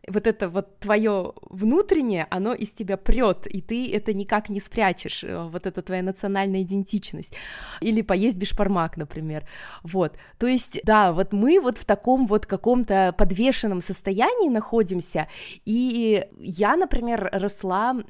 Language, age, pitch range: Russian, 20-39, 175-215 Hz